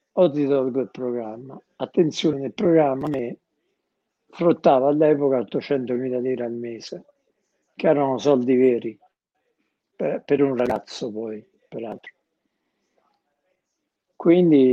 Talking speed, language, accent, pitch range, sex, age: 105 wpm, Italian, native, 120-150 Hz, male, 60-79